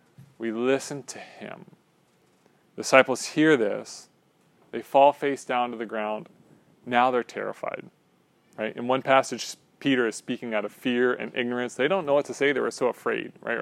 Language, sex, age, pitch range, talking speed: English, male, 30-49, 115-135 Hz, 175 wpm